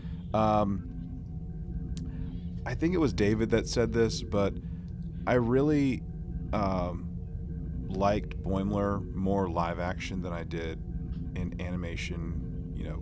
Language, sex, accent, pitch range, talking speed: English, male, American, 85-95 Hz, 115 wpm